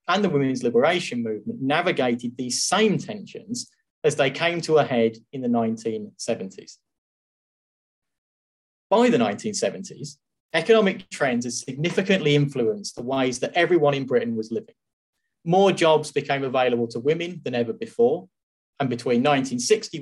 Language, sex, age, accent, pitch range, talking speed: English, male, 30-49, British, 120-200 Hz, 140 wpm